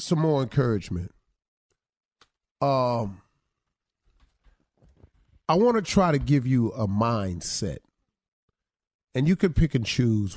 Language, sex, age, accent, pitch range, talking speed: English, male, 40-59, American, 115-160 Hz, 110 wpm